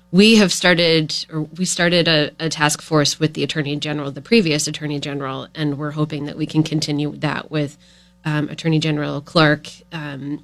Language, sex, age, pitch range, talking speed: English, female, 30-49, 150-165 Hz, 185 wpm